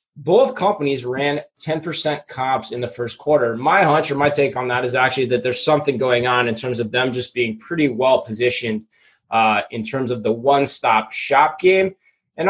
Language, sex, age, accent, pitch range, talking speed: English, male, 20-39, American, 120-155 Hz, 195 wpm